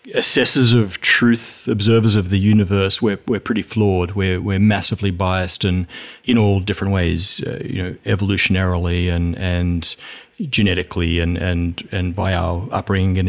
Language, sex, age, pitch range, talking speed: English, male, 30-49, 95-120 Hz, 155 wpm